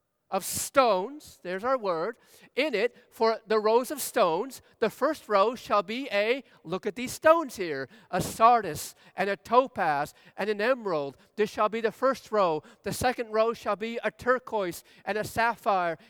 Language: English